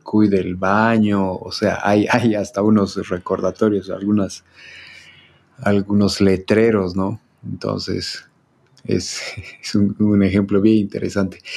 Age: 30-49